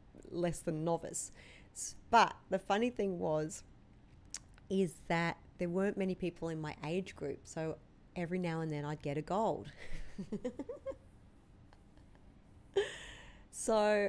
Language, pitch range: English, 160-210 Hz